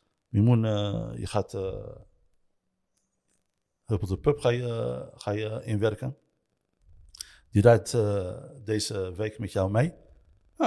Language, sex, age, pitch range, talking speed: Dutch, male, 60-79, 100-140 Hz, 110 wpm